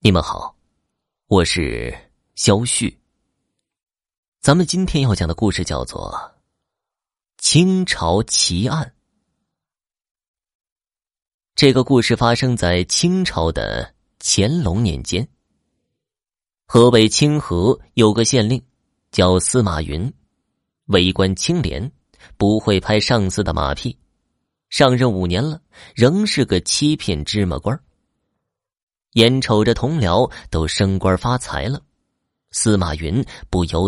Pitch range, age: 90-125 Hz, 30-49